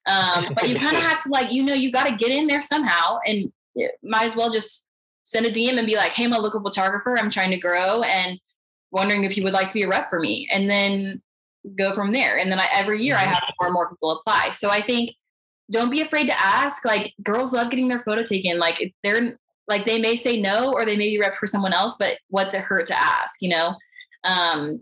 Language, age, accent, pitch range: English, 10-29, American, 180-230 Hz